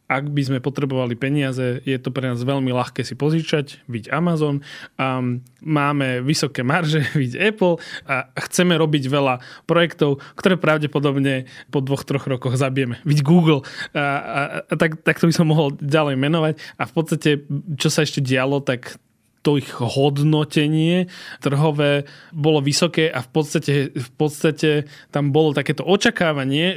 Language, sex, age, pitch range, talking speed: Slovak, male, 20-39, 135-155 Hz, 155 wpm